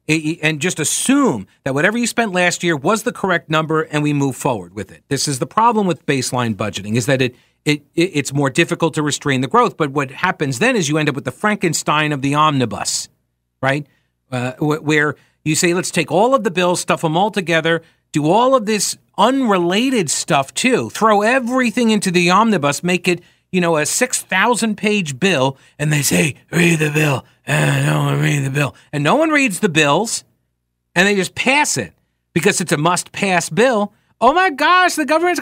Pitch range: 140-220 Hz